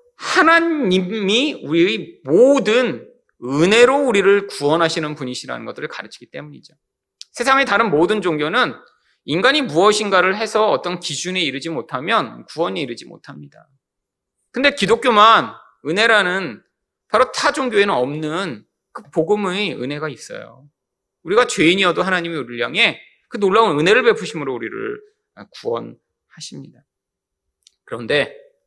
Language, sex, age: Korean, male, 30-49